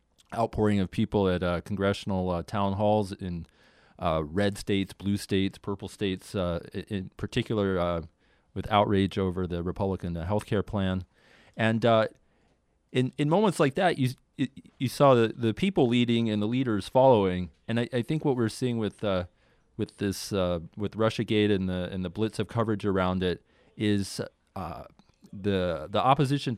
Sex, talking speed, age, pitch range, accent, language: male, 170 wpm, 30-49, 95-115 Hz, American, English